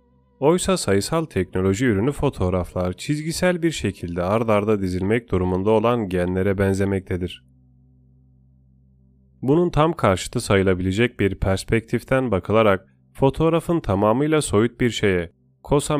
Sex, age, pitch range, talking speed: male, 30-49, 95-120 Hz, 105 wpm